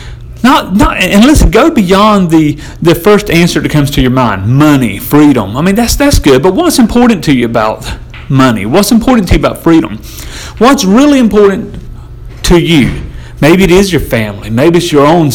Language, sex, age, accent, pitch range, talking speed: English, male, 40-59, American, 120-165 Hz, 190 wpm